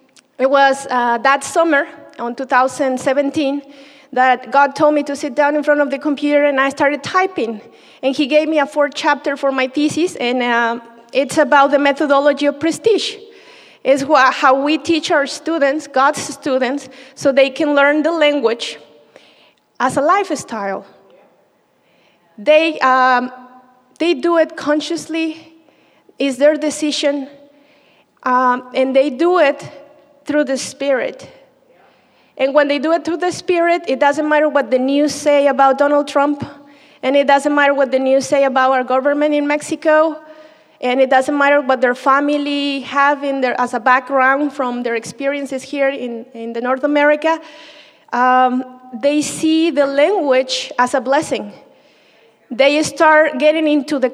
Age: 30-49